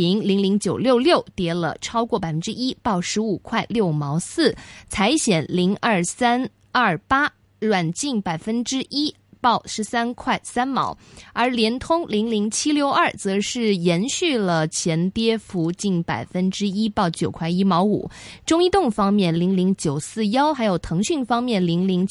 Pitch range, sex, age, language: 180-245 Hz, female, 20-39, Chinese